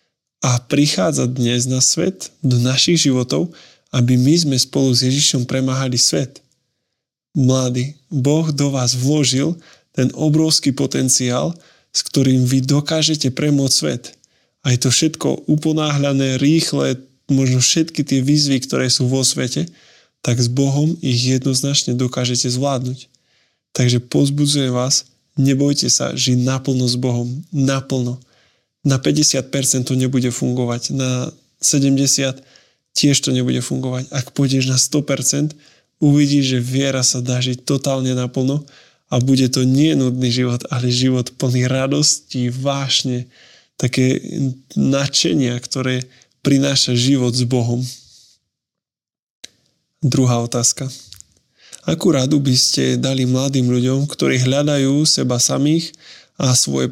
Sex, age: male, 20-39